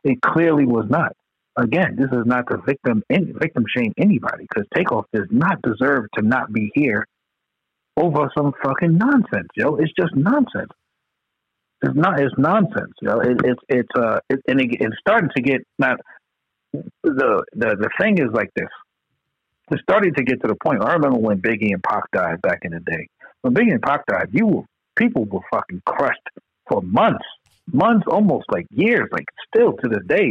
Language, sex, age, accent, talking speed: English, male, 60-79, American, 190 wpm